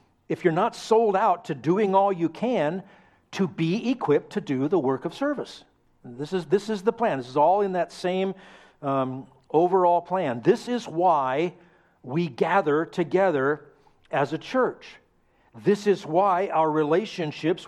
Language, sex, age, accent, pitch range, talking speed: English, male, 50-69, American, 145-190 Hz, 165 wpm